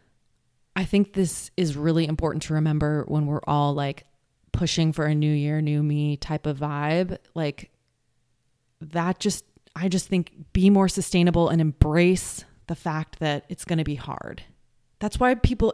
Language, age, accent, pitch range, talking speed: English, 20-39, American, 150-180 Hz, 170 wpm